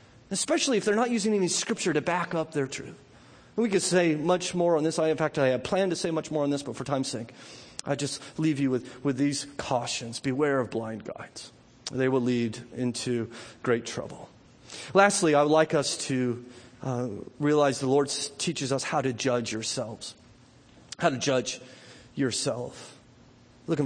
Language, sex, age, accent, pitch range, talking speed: English, male, 40-59, American, 125-190 Hz, 190 wpm